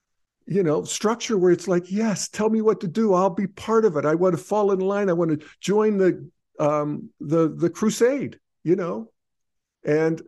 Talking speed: 205 wpm